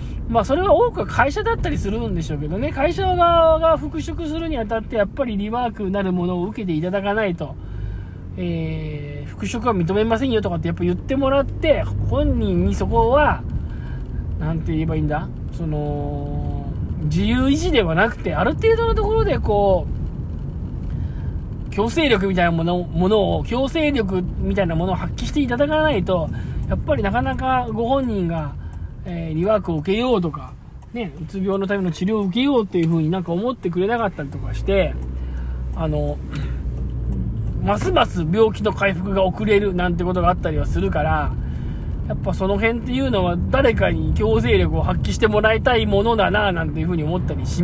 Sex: male